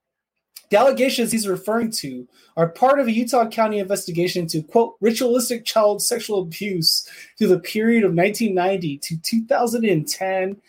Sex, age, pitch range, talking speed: male, 20-39, 165-215 Hz, 135 wpm